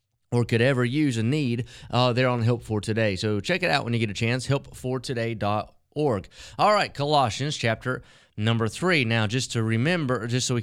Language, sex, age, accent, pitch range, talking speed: English, male, 30-49, American, 115-135 Hz, 200 wpm